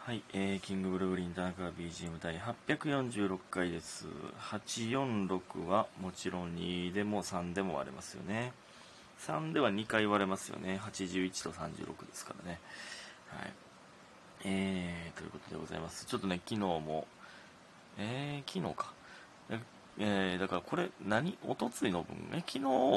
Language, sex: Japanese, male